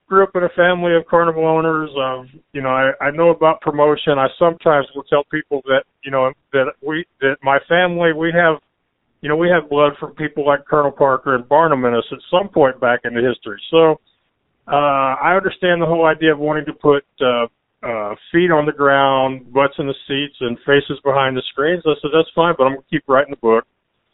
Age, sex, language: 50-69, male, English